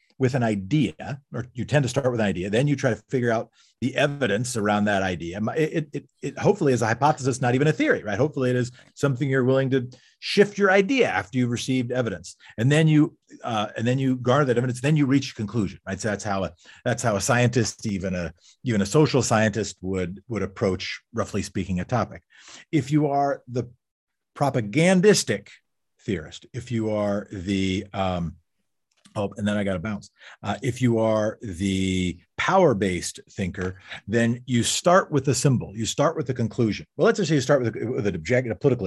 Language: English